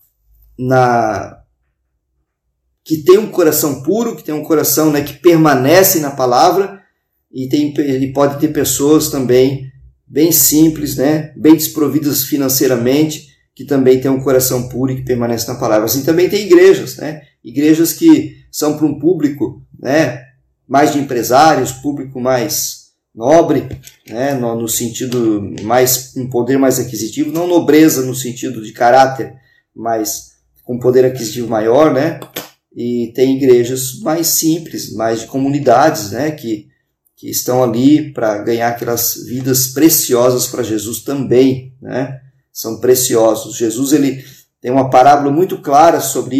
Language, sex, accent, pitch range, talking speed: Portuguese, male, Brazilian, 120-150 Hz, 145 wpm